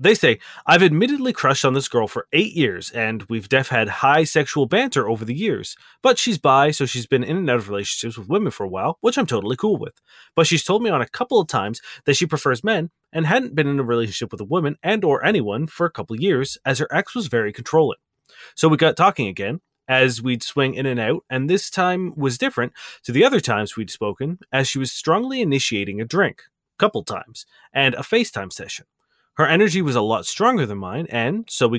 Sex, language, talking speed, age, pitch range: male, English, 235 wpm, 30-49, 120-170 Hz